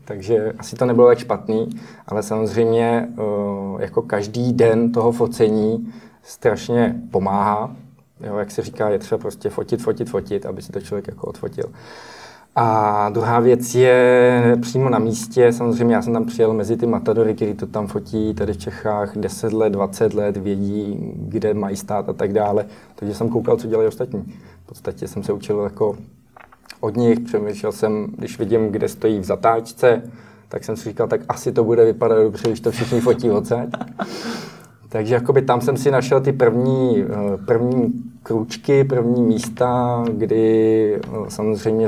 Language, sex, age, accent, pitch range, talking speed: Czech, male, 20-39, native, 105-120 Hz, 160 wpm